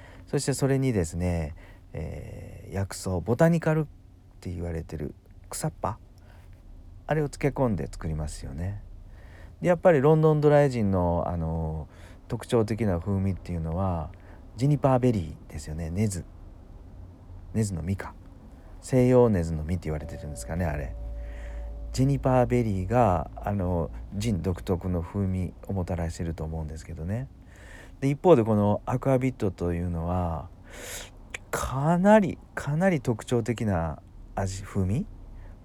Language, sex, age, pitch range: Japanese, male, 40-59, 85-115 Hz